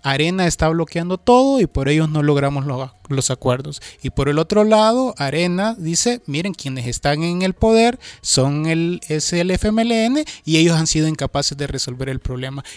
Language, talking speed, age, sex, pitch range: Spanish, 175 wpm, 30-49, male, 135-180 Hz